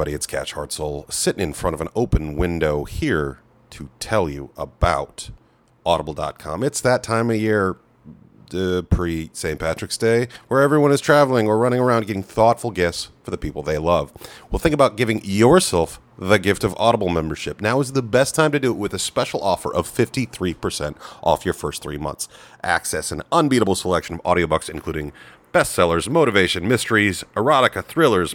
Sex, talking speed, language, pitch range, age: male, 175 wpm, English, 85-120 Hz, 30-49